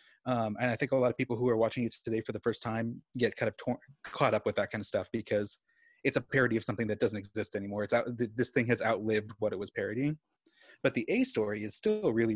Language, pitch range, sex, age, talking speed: English, 115-140 Hz, male, 30-49, 270 wpm